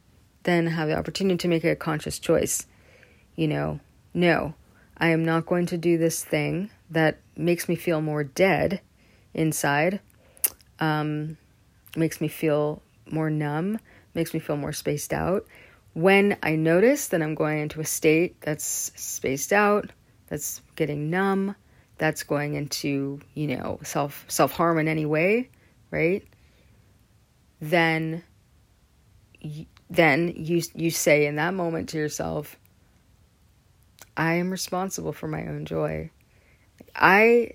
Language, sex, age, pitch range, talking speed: English, female, 40-59, 145-175 Hz, 135 wpm